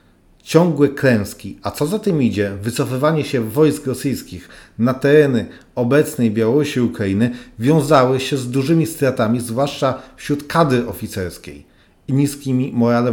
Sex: male